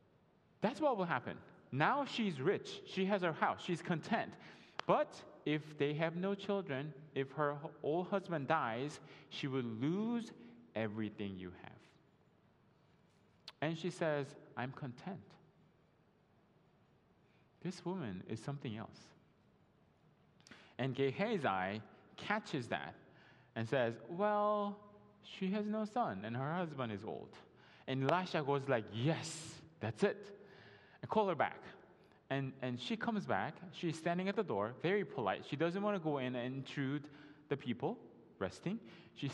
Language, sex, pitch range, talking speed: English, male, 125-185 Hz, 140 wpm